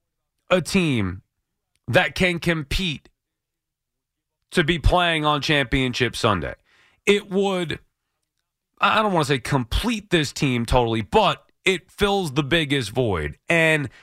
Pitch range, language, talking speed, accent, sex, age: 135-175 Hz, English, 125 wpm, American, male, 30-49